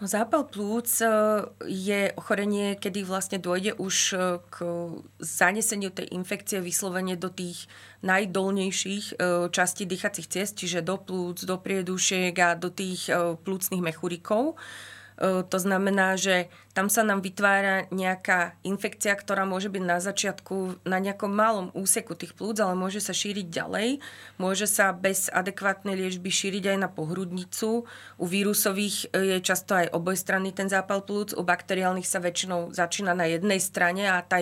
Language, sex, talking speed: Slovak, female, 145 wpm